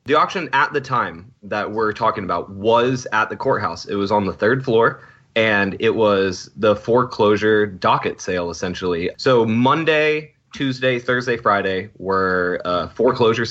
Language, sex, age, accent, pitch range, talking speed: English, male, 20-39, American, 100-125 Hz, 155 wpm